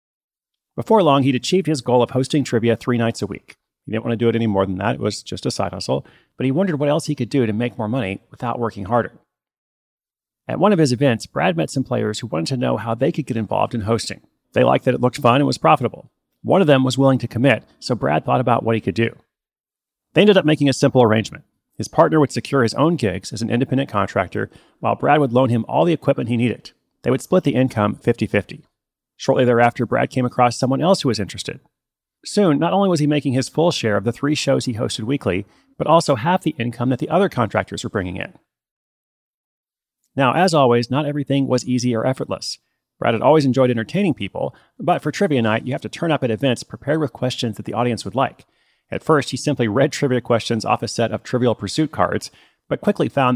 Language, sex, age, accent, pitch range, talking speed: English, male, 30-49, American, 115-145 Hz, 235 wpm